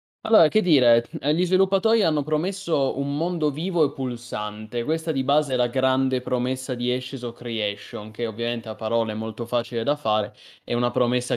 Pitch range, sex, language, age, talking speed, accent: 115-145 Hz, male, Italian, 20-39, 180 wpm, native